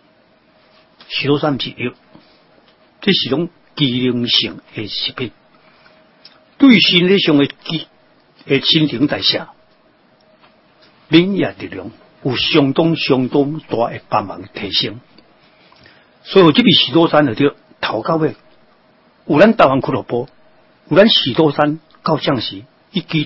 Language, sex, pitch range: Chinese, male, 130-170 Hz